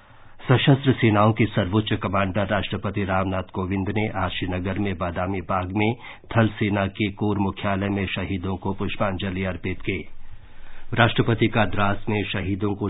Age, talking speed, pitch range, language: 50-69, 150 wpm, 95-110 Hz, Hindi